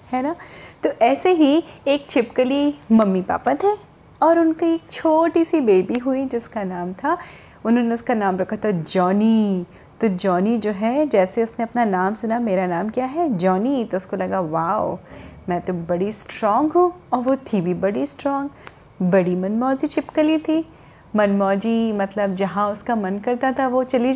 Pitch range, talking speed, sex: 200-275 Hz, 170 wpm, female